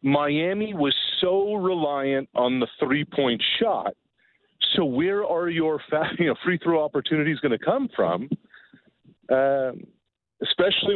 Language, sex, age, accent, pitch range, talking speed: English, male, 40-59, American, 120-175 Hz, 135 wpm